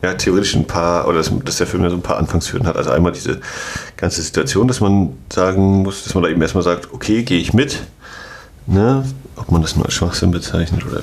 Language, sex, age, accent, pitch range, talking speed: German, male, 40-59, German, 85-105 Hz, 225 wpm